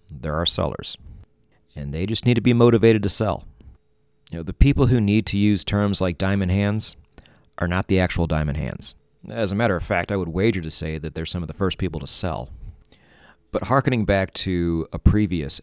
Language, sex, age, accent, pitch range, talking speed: English, male, 40-59, American, 80-105 Hz, 210 wpm